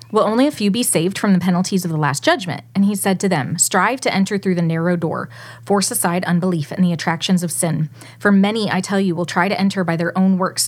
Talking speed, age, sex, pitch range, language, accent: 260 wpm, 30-49, female, 170-215 Hz, English, American